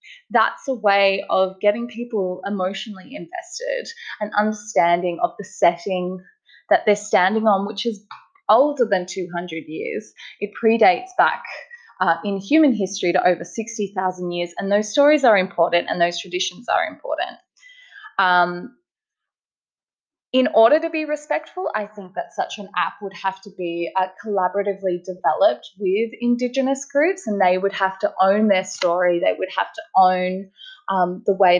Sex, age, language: female, 20-39, English